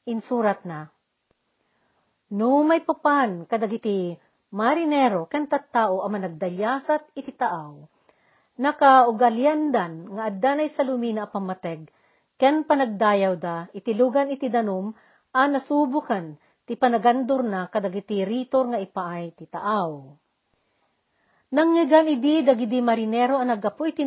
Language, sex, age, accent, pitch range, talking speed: Filipino, female, 50-69, native, 195-275 Hz, 105 wpm